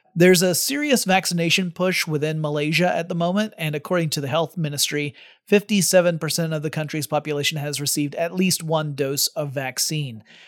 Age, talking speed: 30-49, 165 wpm